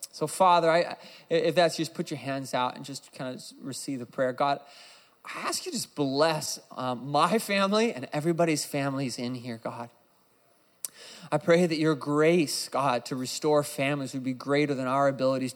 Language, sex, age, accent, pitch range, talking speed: English, male, 20-39, American, 125-145 Hz, 185 wpm